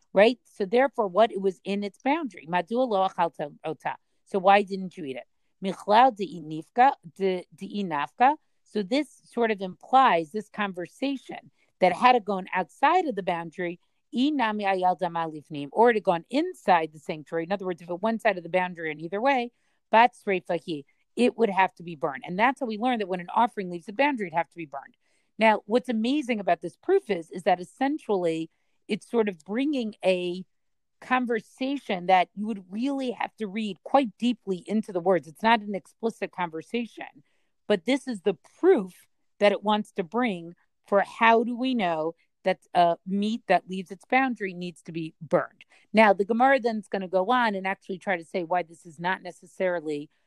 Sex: female